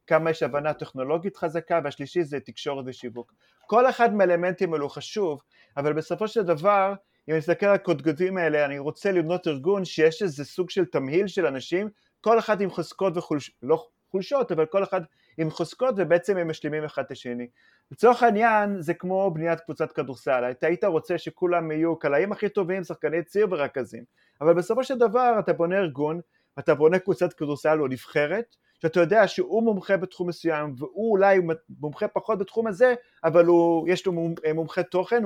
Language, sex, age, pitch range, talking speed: Hebrew, male, 30-49, 155-195 Hz, 170 wpm